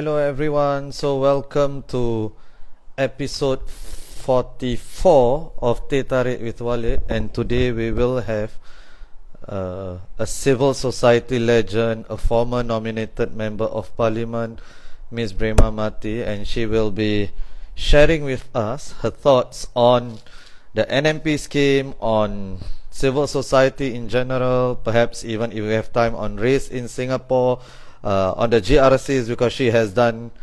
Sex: male